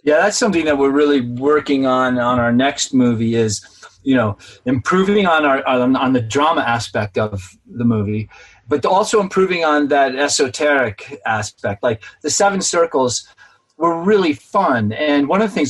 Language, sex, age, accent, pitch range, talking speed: English, male, 30-49, American, 125-165 Hz, 170 wpm